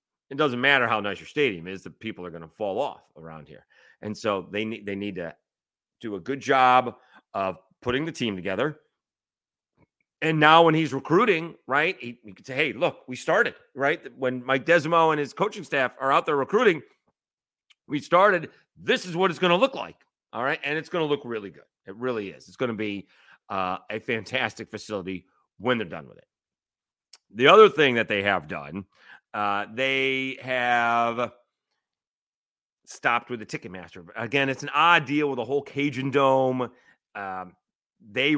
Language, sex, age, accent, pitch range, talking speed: English, male, 40-59, American, 100-135 Hz, 185 wpm